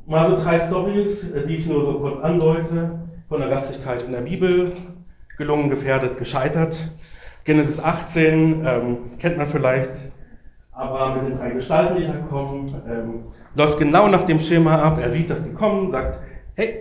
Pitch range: 125-165 Hz